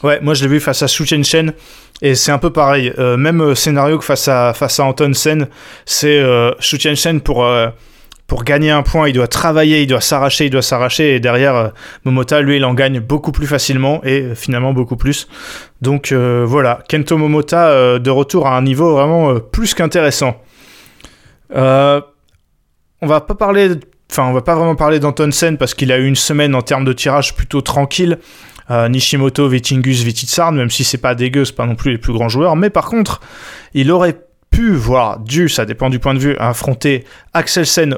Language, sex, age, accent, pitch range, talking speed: French, male, 20-39, French, 130-155 Hz, 205 wpm